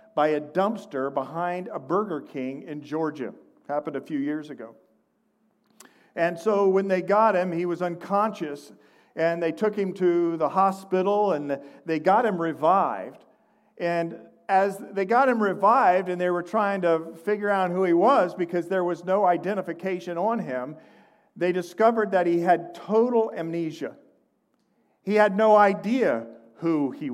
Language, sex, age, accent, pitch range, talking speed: English, male, 50-69, American, 170-220 Hz, 155 wpm